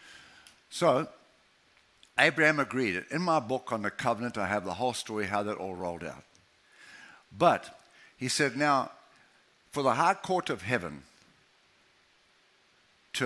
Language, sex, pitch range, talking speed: English, male, 105-140 Hz, 135 wpm